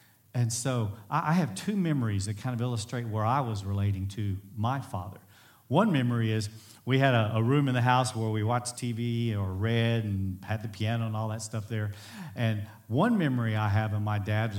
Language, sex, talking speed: English, male, 210 wpm